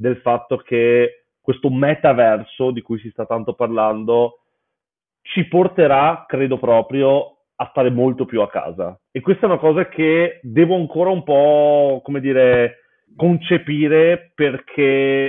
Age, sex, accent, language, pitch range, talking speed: 30-49, male, native, Italian, 120-155 Hz, 135 wpm